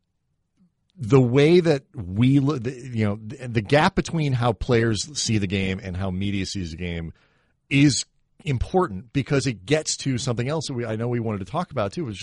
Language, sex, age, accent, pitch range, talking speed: English, male, 40-59, American, 100-130 Hz, 190 wpm